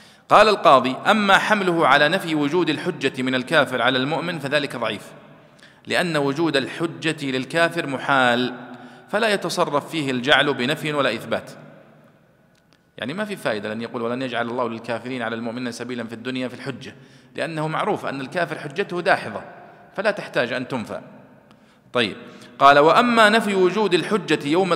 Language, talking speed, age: Arabic, 145 wpm, 40-59